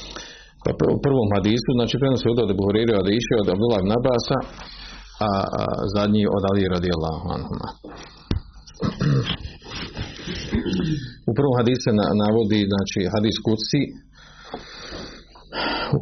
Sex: male